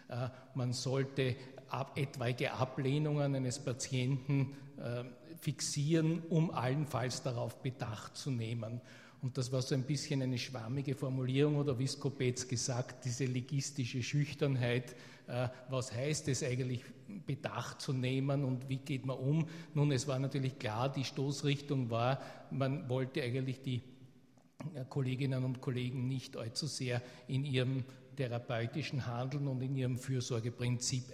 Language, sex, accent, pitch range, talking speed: German, male, Austrian, 125-150 Hz, 135 wpm